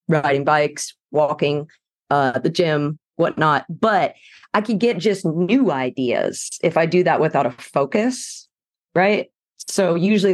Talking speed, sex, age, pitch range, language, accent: 140 wpm, female, 30-49, 140-180 Hz, English, American